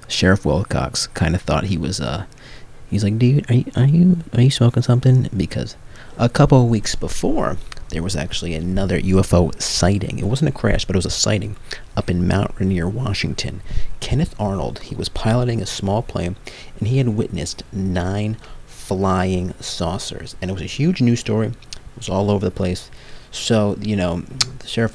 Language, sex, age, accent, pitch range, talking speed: English, male, 30-49, American, 85-115 Hz, 185 wpm